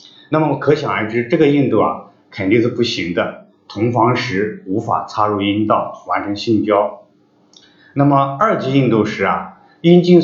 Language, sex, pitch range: Chinese, male, 110-165 Hz